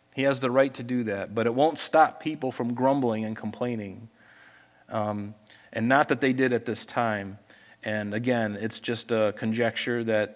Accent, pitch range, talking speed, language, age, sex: American, 110-140 Hz, 185 wpm, English, 40-59, male